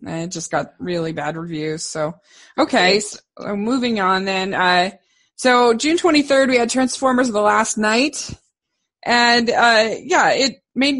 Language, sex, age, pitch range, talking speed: English, female, 20-39, 180-255 Hz, 145 wpm